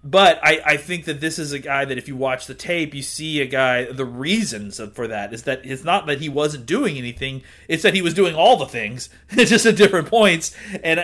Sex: male